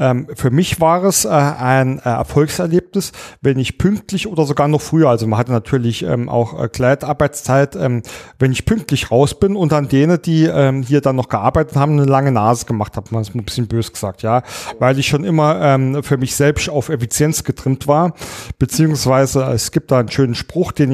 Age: 40-59